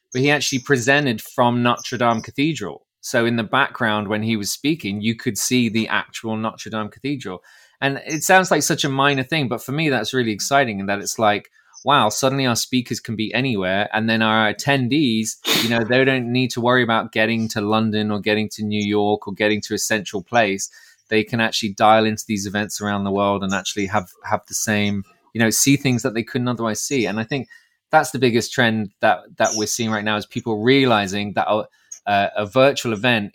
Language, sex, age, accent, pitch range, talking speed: English, male, 20-39, British, 105-125 Hz, 220 wpm